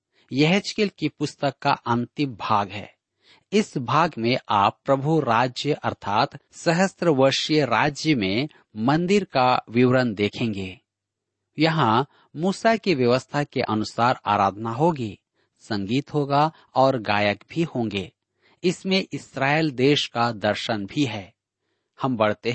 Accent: native